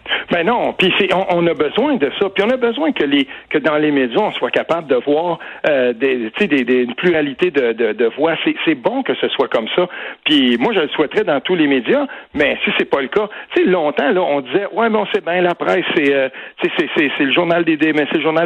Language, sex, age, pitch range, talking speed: French, male, 60-79, 135-225 Hz, 255 wpm